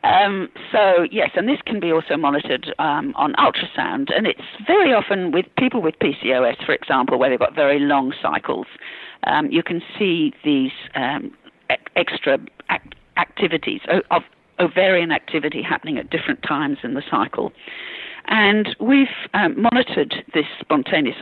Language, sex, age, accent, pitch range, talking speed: English, female, 50-69, British, 155-220 Hz, 145 wpm